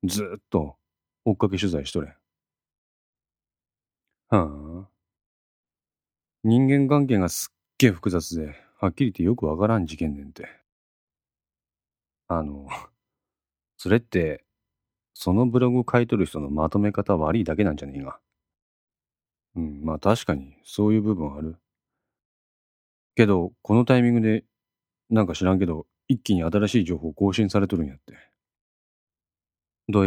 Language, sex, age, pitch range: Japanese, male, 40-59, 80-115 Hz